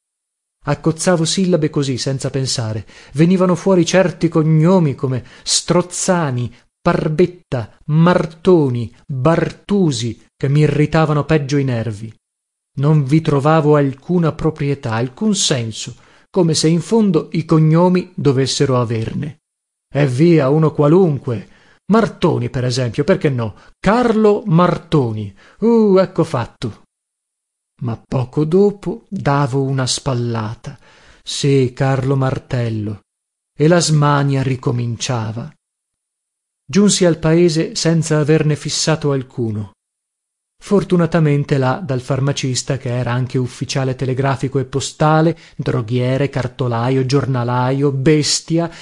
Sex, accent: male, native